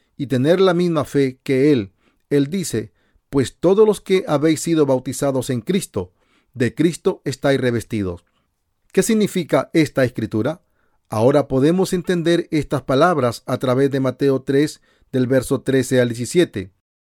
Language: Spanish